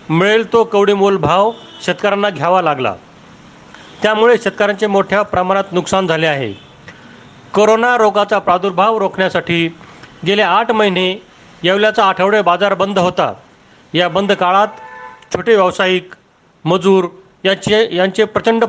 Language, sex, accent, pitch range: Marathi, male, native, 175-205 Hz